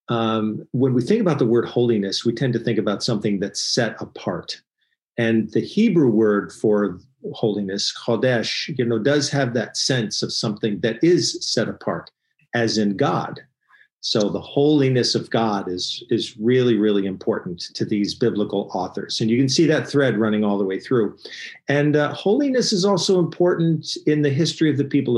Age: 50-69